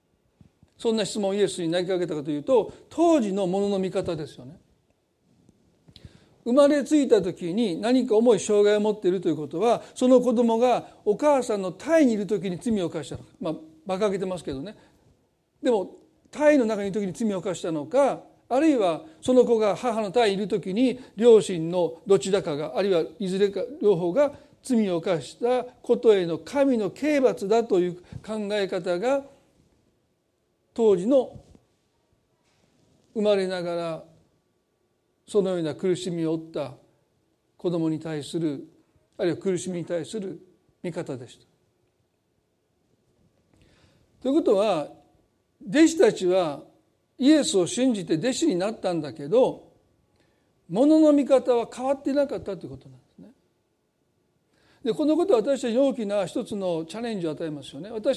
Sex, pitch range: male, 180-250 Hz